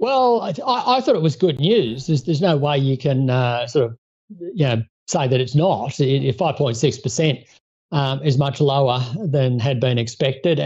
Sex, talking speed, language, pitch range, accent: male, 205 wpm, English, 125-145 Hz, Australian